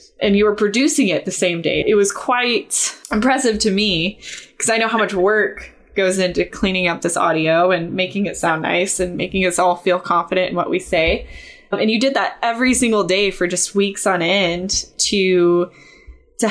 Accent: American